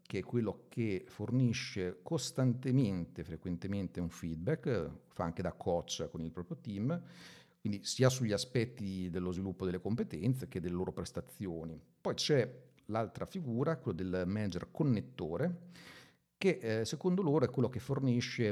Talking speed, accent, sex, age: 150 wpm, native, male, 50-69